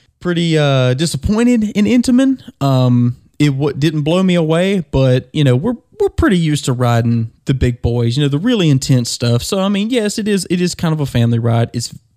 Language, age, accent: English, 20-39, American